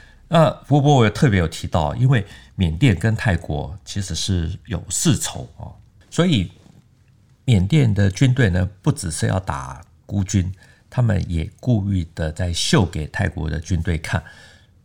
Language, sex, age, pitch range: Chinese, male, 50-69, 85-110 Hz